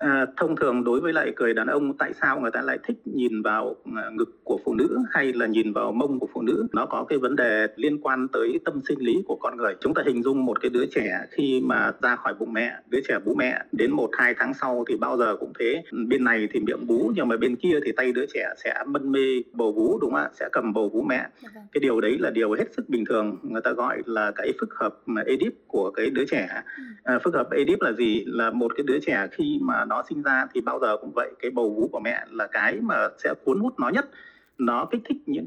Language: Vietnamese